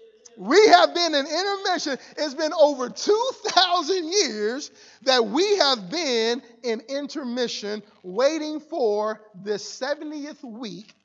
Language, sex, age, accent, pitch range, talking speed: English, male, 40-59, American, 210-290 Hz, 115 wpm